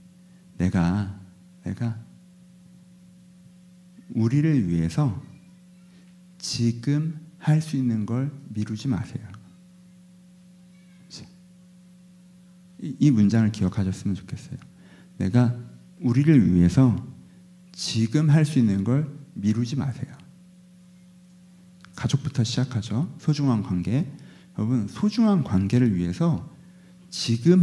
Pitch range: 115-180 Hz